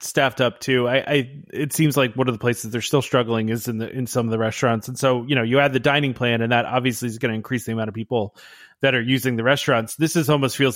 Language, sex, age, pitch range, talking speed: English, male, 30-49, 120-150 Hz, 290 wpm